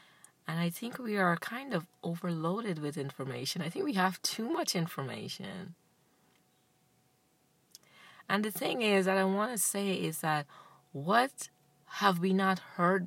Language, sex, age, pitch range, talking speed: English, female, 30-49, 155-200 Hz, 150 wpm